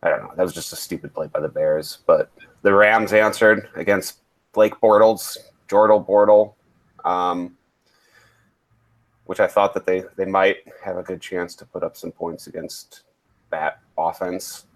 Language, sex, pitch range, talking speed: English, male, 90-110 Hz, 165 wpm